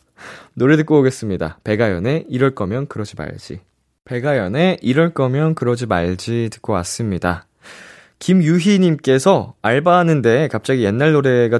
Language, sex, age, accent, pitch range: Korean, male, 20-39, native, 90-140 Hz